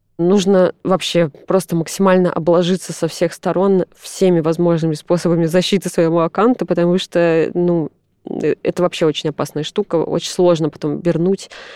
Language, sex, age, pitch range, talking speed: Russian, female, 20-39, 160-185 Hz, 135 wpm